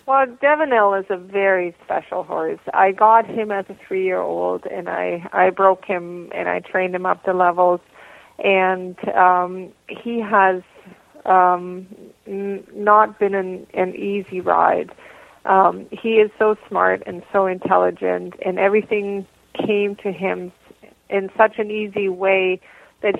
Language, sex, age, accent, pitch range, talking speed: English, female, 40-59, American, 180-205 Hz, 140 wpm